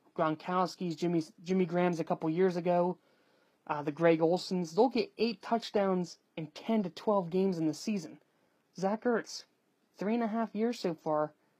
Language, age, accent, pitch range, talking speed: English, 30-49, American, 170-220 Hz, 170 wpm